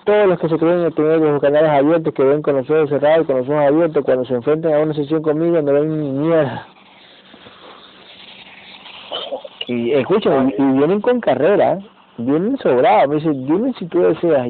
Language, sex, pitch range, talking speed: Spanish, male, 135-170 Hz, 180 wpm